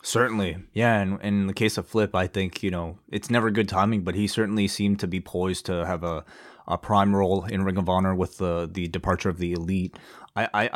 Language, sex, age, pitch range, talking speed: English, male, 20-39, 95-115 Hz, 230 wpm